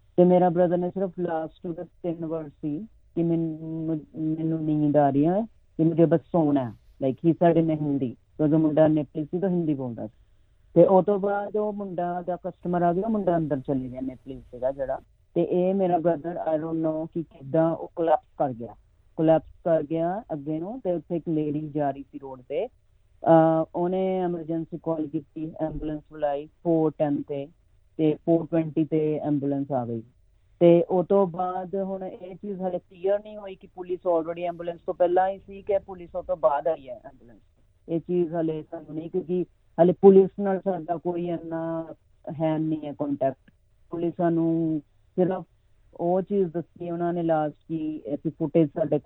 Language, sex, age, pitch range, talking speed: Punjabi, female, 30-49, 150-180 Hz, 155 wpm